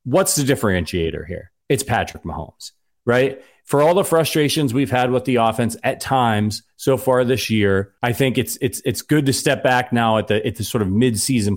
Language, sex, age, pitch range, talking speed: English, male, 30-49, 105-135 Hz, 205 wpm